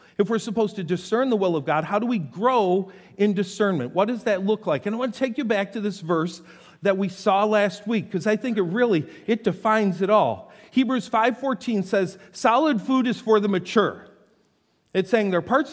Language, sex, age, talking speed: English, male, 50-69, 220 wpm